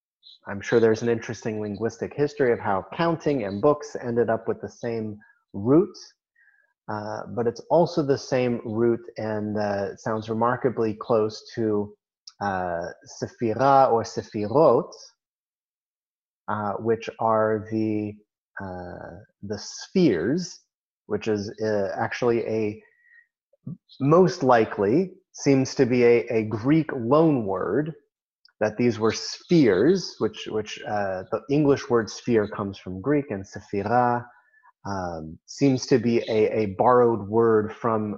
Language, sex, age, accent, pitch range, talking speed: English, male, 30-49, American, 105-130 Hz, 130 wpm